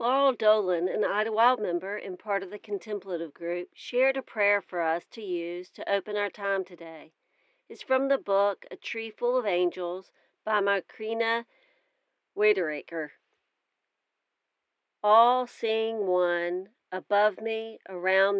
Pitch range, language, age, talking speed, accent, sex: 185-245 Hz, English, 40-59, 135 wpm, American, female